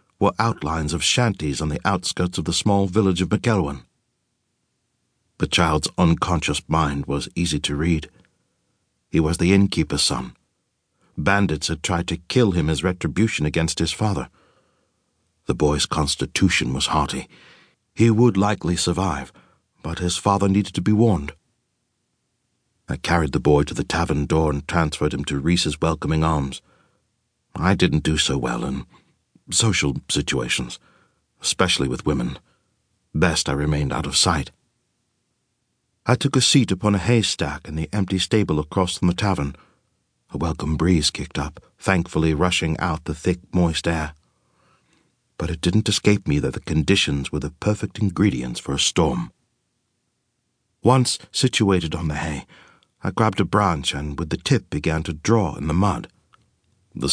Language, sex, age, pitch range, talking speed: English, male, 60-79, 75-100 Hz, 155 wpm